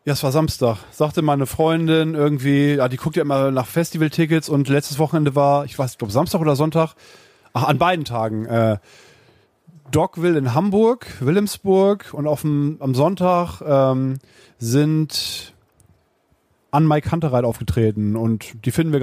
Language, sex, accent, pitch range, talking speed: German, male, German, 125-165 Hz, 150 wpm